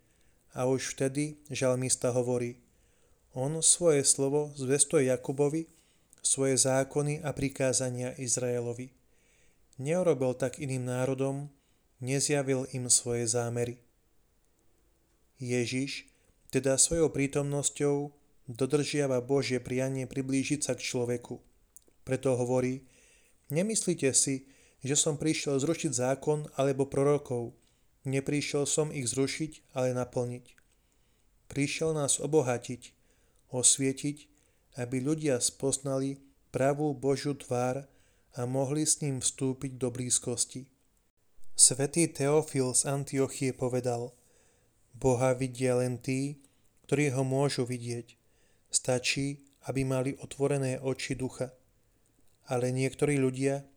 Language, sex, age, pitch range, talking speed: Slovak, male, 30-49, 125-140 Hz, 100 wpm